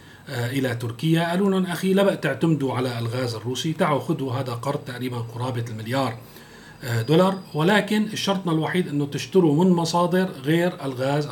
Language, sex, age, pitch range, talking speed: Arabic, male, 40-59, 130-170 Hz, 145 wpm